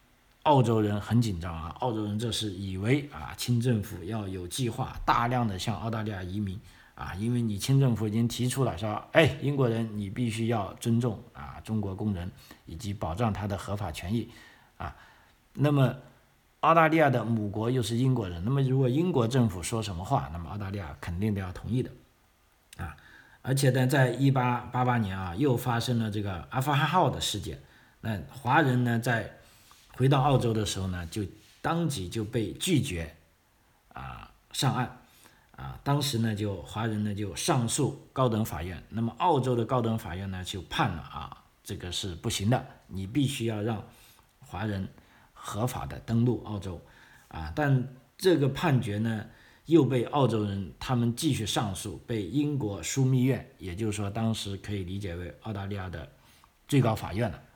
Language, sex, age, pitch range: Chinese, male, 50-69, 100-125 Hz